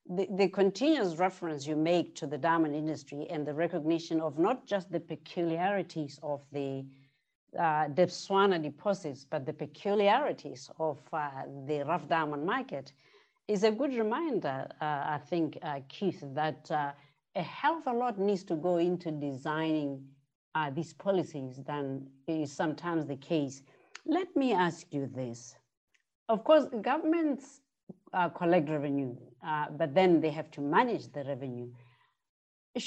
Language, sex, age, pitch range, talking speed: English, female, 50-69, 150-195 Hz, 150 wpm